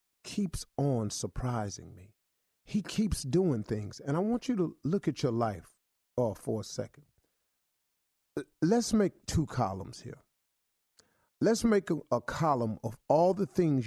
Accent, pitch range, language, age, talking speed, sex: American, 115-160 Hz, English, 40-59, 150 wpm, male